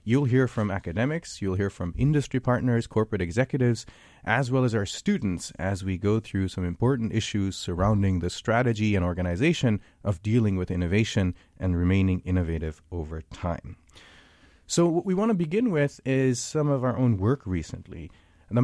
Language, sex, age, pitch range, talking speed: English, male, 30-49, 95-135 Hz, 165 wpm